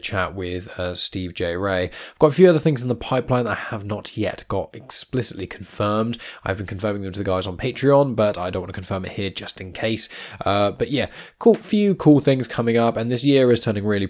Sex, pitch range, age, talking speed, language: male, 95-120 Hz, 10-29, 245 wpm, English